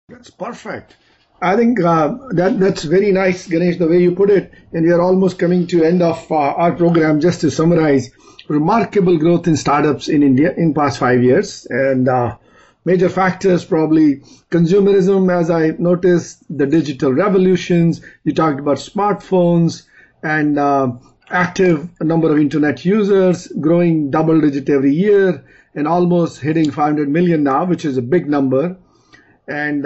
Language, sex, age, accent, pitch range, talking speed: English, male, 50-69, Indian, 145-180 Hz, 160 wpm